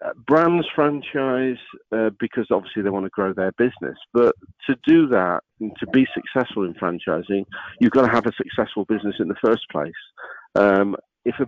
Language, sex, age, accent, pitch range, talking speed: English, male, 50-69, British, 100-120 Hz, 185 wpm